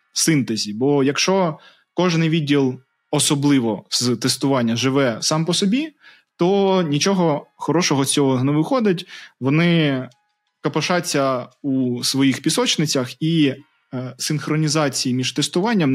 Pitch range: 130-160 Hz